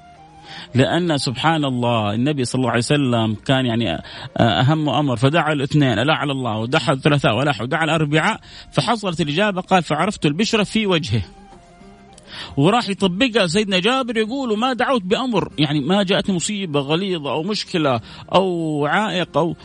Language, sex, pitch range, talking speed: Arabic, male, 145-210 Hz, 140 wpm